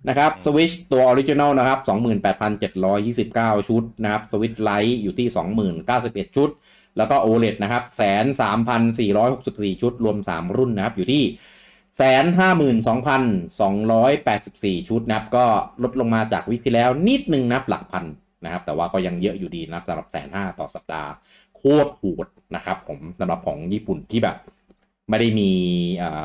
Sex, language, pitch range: male, English, 100-135 Hz